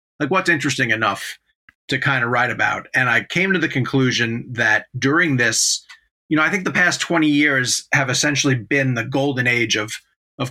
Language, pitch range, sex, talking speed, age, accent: English, 120-155 Hz, male, 195 wpm, 30-49, American